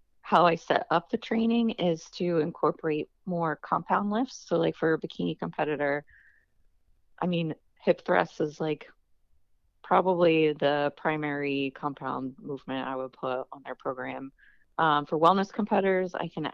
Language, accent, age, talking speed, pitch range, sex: English, American, 30-49, 150 wpm, 140-175 Hz, female